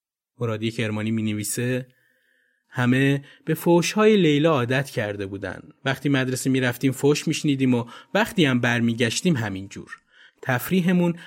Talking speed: 130 wpm